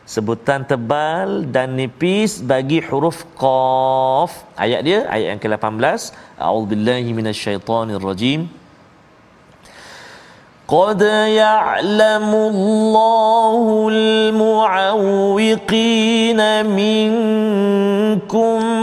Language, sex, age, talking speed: Malayalam, male, 40-59, 50 wpm